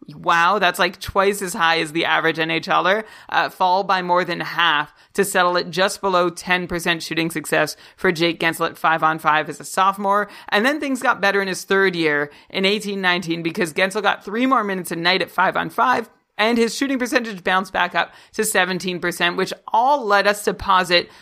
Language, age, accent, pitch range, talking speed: English, 30-49, American, 170-205 Hz, 205 wpm